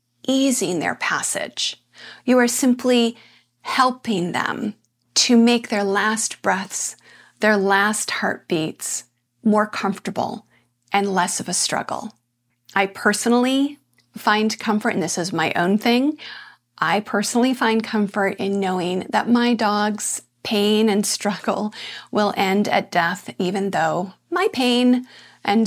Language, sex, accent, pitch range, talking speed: English, female, American, 195-230 Hz, 125 wpm